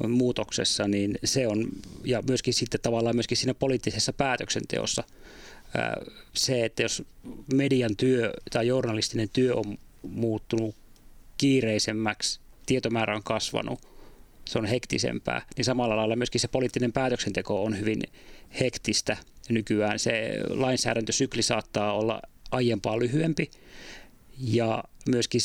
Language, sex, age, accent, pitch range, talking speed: Finnish, male, 30-49, native, 110-130 Hz, 110 wpm